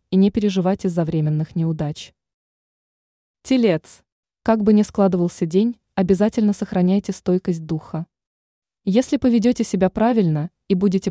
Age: 20-39